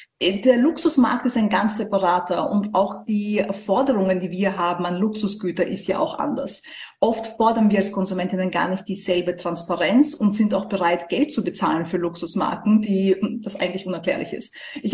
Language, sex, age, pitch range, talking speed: German, female, 30-49, 185-220 Hz, 175 wpm